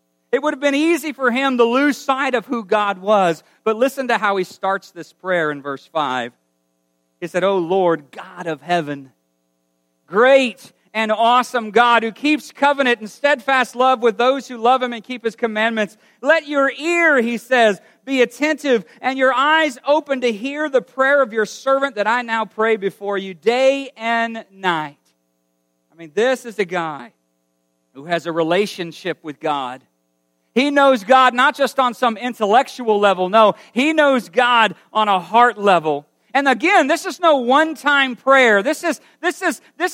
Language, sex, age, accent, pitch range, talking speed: English, male, 40-59, American, 170-260 Hz, 175 wpm